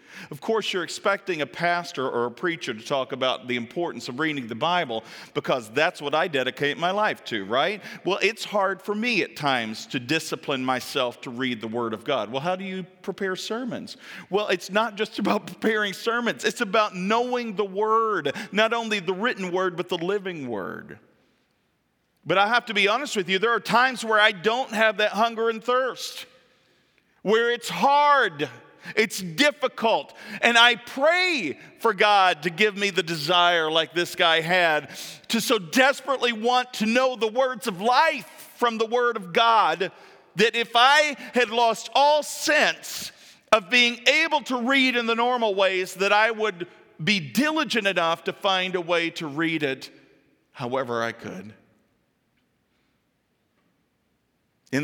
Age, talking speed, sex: 40-59, 170 wpm, male